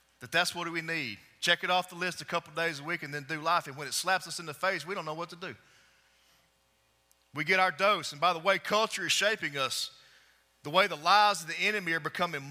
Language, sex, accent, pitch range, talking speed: English, male, American, 135-190 Hz, 265 wpm